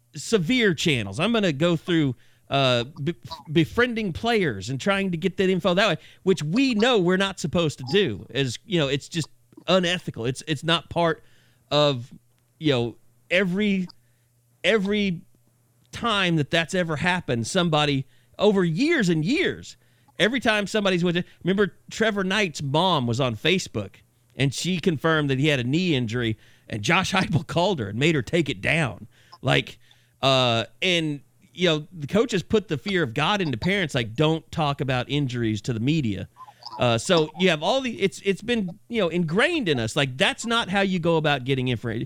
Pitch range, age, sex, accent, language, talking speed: 125-180 Hz, 40-59, male, American, English, 185 wpm